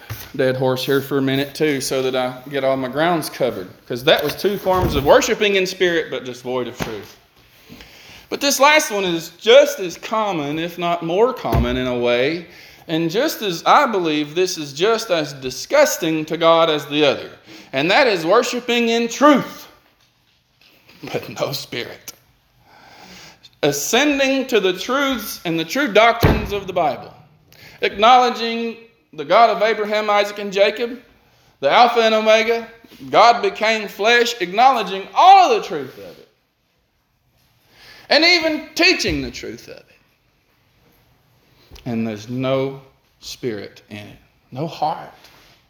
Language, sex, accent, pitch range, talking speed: English, male, American, 140-230 Hz, 150 wpm